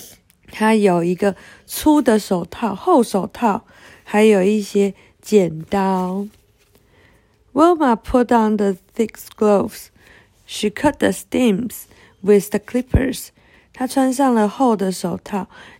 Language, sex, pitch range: Chinese, female, 190-255 Hz